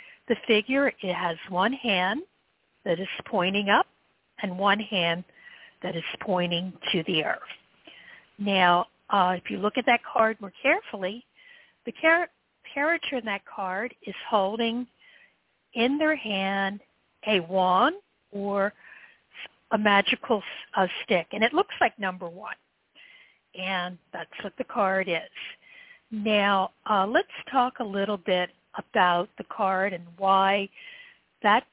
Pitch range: 190-255 Hz